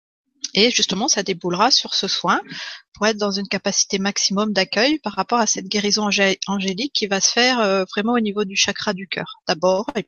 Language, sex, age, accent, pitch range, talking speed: French, female, 40-59, French, 195-245 Hz, 195 wpm